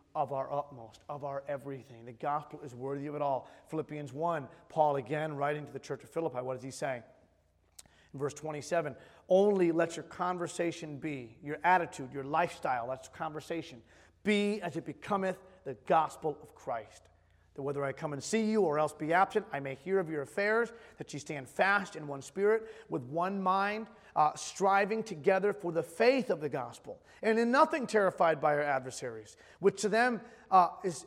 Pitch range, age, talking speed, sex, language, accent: 140-195 Hz, 30-49, 185 wpm, male, English, American